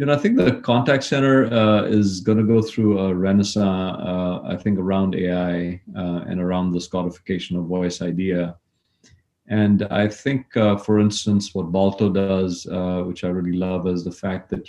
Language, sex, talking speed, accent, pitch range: English, male, 190 wpm, Indian, 90-100 Hz